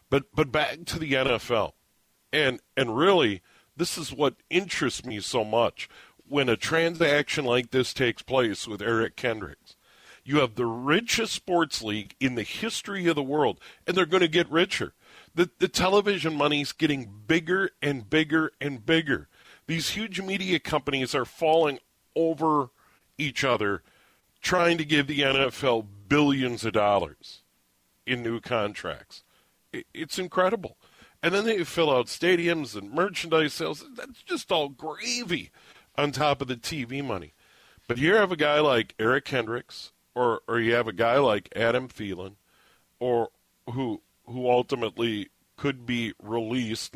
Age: 50-69